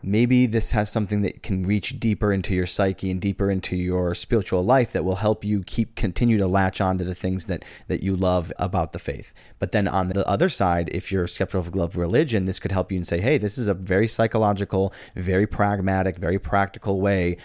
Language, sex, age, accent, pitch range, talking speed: English, male, 30-49, American, 90-105 Hz, 225 wpm